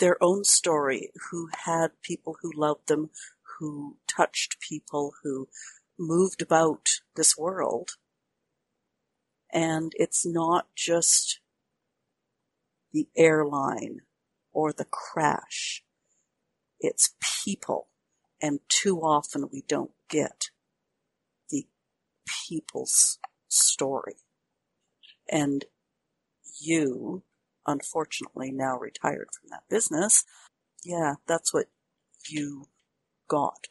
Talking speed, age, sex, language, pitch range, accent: 90 wpm, 60-79, female, English, 150-190 Hz, American